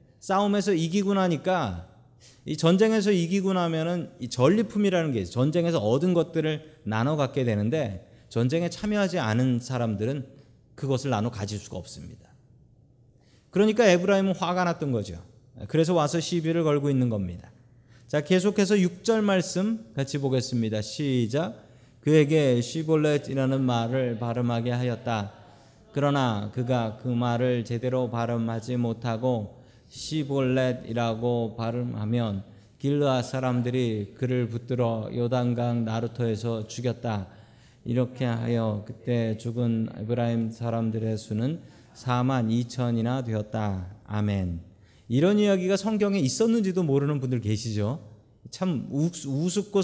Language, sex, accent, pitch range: Korean, male, native, 115-155 Hz